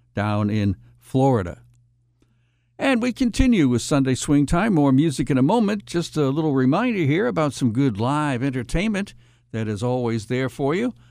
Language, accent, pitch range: English, American, 120-160 Hz